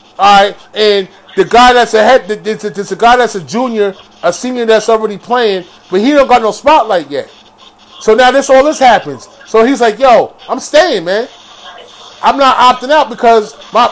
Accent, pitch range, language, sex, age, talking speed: American, 220-270 Hz, English, male, 30-49, 190 wpm